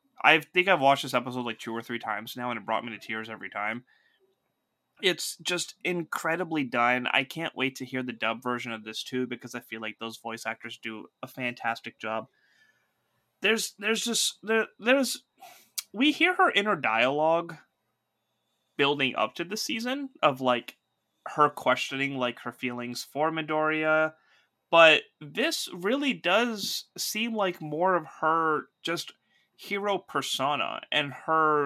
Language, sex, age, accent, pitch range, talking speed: English, male, 20-39, American, 125-185 Hz, 160 wpm